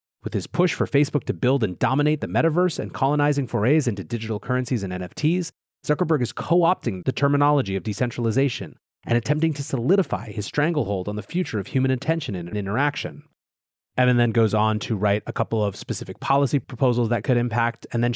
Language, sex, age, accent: English, male, 30-49, American